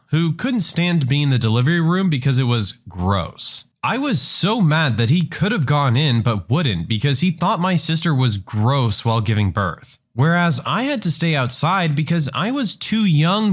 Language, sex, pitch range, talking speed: English, male, 120-165 Hz, 200 wpm